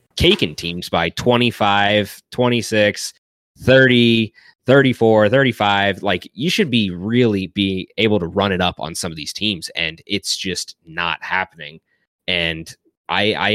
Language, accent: English, American